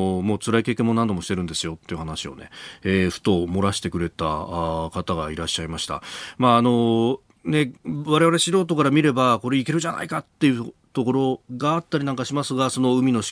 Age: 40-59